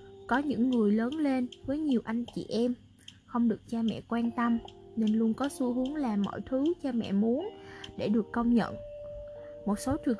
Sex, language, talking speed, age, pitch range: female, Vietnamese, 200 wpm, 20-39, 205-265 Hz